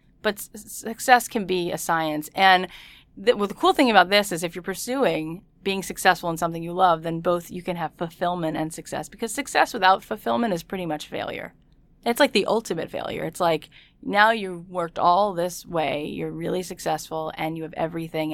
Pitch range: 160-200 Hz